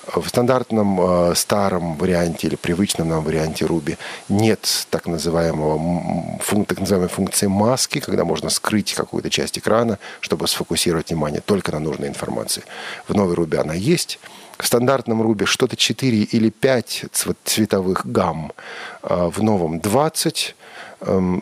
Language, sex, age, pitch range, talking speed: Russian, male, 40-59, 90-130 Hz, 135 wpm